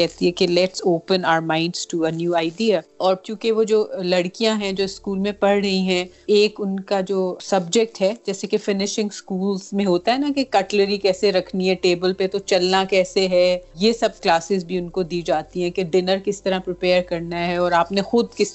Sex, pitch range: female, 175-200 Hz